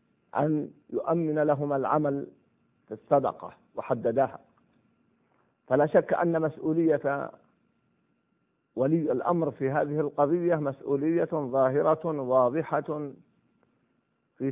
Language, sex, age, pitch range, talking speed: Arabic, male, 50-69, 150-200 Hz, 85 wpm